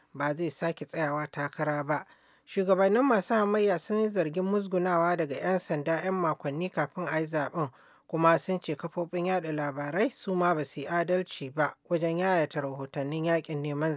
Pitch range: 150-180 Hz